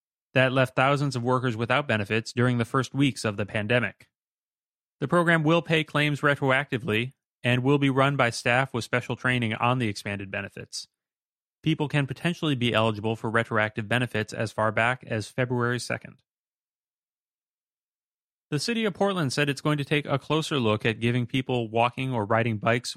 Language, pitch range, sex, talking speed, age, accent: English, 110-135 Hz, male, 170 wpm, 30-49, American